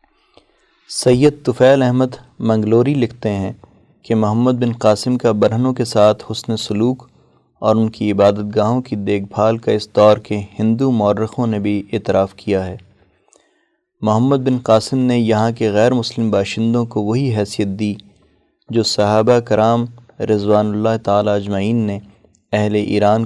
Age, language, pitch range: 30-49, Urdu, 105-120 Hz